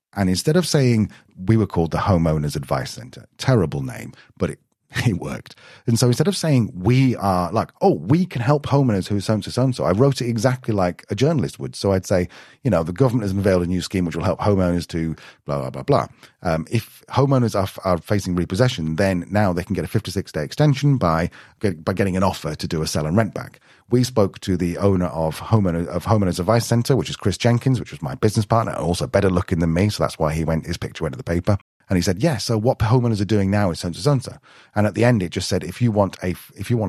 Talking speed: 250 wpm